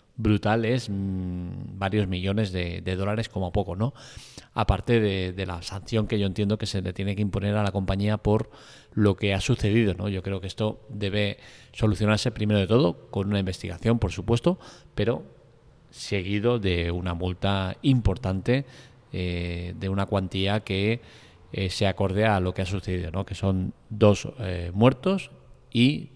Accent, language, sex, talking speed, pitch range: Spanish, Spanish, male, 170 wpm, 95-120 Hz